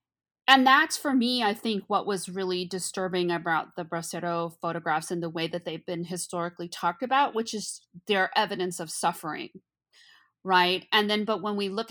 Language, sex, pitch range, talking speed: English, female, 175-235 Hz, 180 wpm